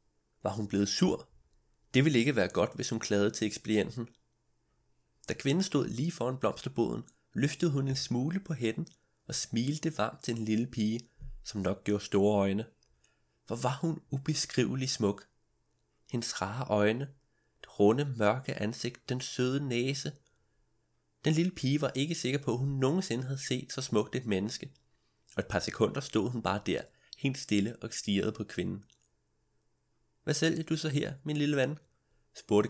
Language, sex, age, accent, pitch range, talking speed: Danish, male, 30-49, native, 105-140 Hz, 170 wpm